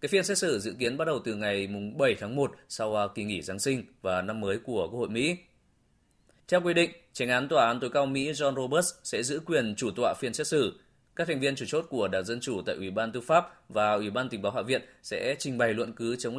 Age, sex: 20-39, male